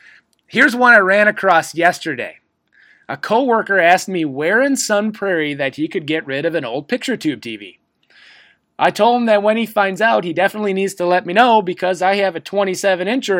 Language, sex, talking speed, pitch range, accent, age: English, male, 200 wpm, 165-230 Hz, American, 30-49